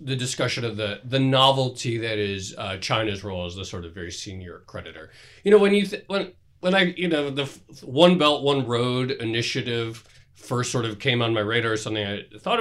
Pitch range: 105-135 Hz